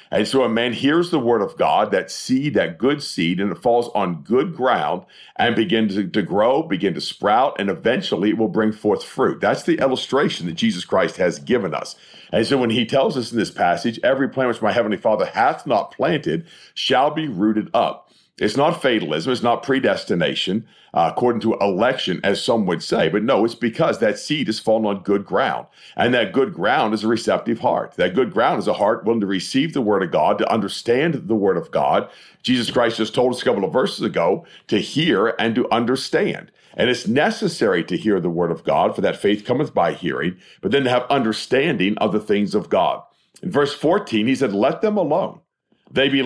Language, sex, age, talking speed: English, male, 50-69, 215 wpm